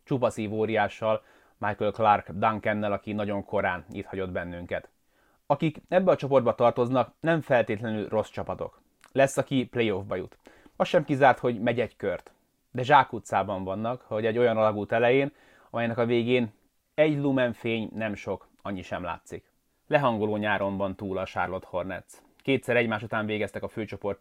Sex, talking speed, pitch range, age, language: male, 155 wpm, 105-120 Hz, 30-49, Hungarian